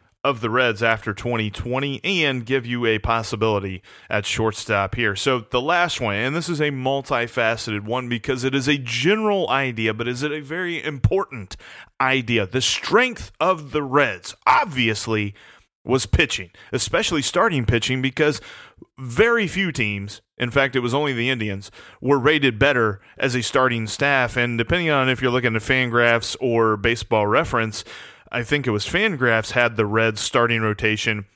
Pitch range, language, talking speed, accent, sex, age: 110-135 Hz, English, 165 wpm, American, male, 30-49